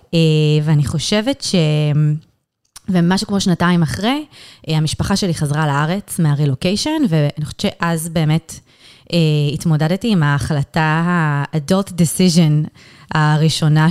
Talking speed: 95 wpm